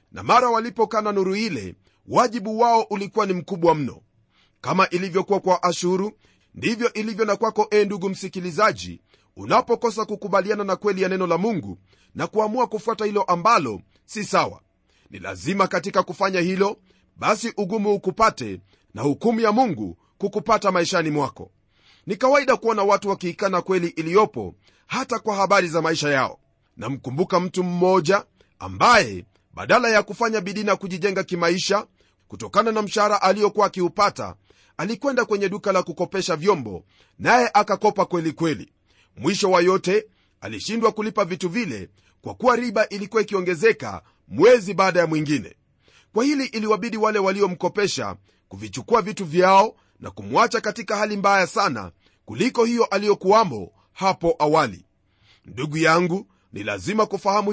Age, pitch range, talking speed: 40-59, 165-215 Hz, 140 wpm